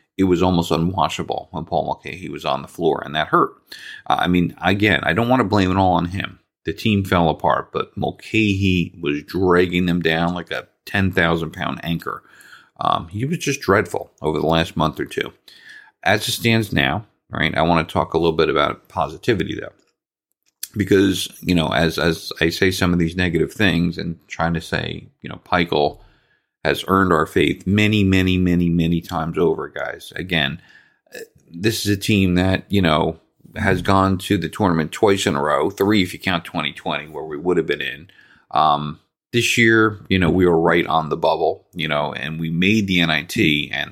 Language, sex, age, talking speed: English, male, 40-59, 195 wpm